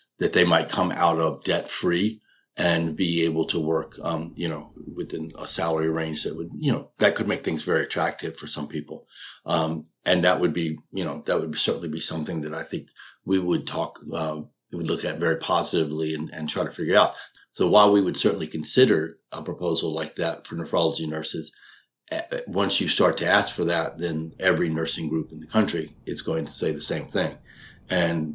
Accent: American